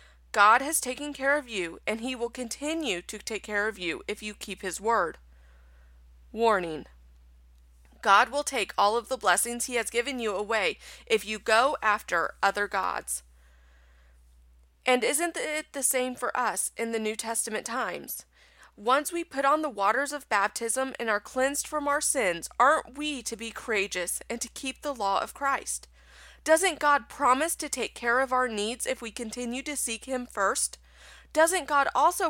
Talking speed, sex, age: 180 wpm, female, 30-49